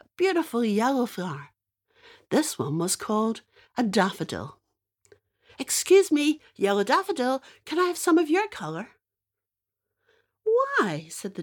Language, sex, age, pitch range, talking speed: English, female, 60-79, 210-355 Hz, 120 wpm